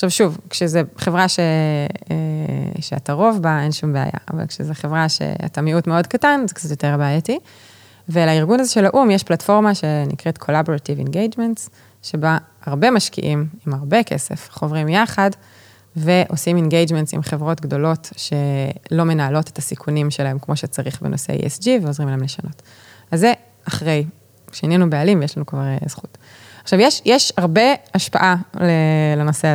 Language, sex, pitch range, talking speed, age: Hebrew, female, 145-185 Hz, 145 wpm, 20-39